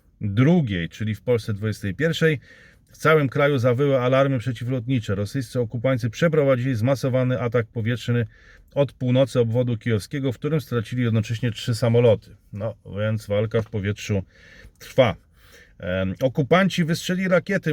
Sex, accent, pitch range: male, native, 115-140 Hz